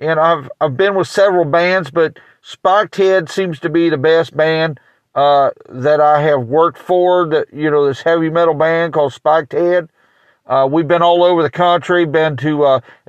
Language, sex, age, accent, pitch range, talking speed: English, male, 50-69, American, 150-180 Hz, 195 wpm